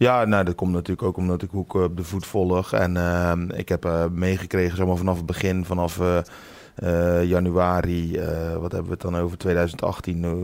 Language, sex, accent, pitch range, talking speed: Dutch, male, Dutch, 85-95 Hz, 205 wpm